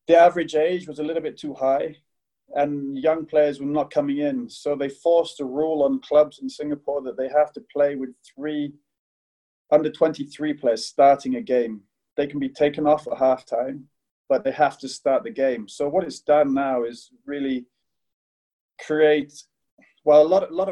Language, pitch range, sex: English, 135-165 Hz, male